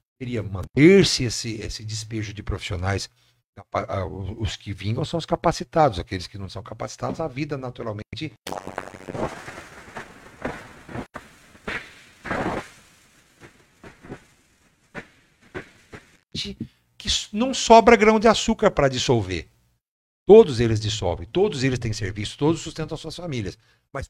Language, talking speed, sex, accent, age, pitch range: Portuguese, 100 wpm, male, Brazilian, 60-79, 100-145 Hz